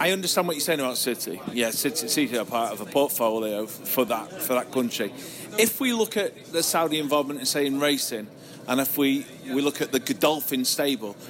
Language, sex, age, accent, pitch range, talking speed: English, male, 40-59, British, 125-160 Hz, 205 wpm